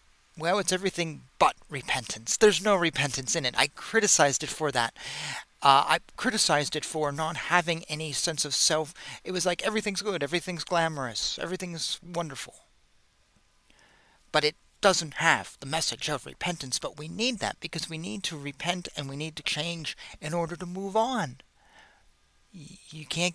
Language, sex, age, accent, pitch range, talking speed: English, male, 40-59, American, 140-175 Hz, 165 wpm